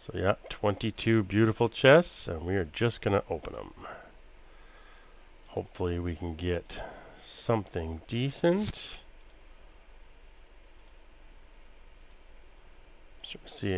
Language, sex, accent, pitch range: English, male, American, 80-100 Hz